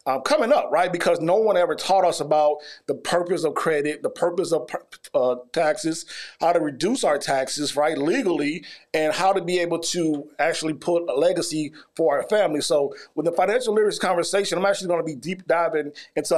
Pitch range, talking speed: 155-190 Hz, 200 wpm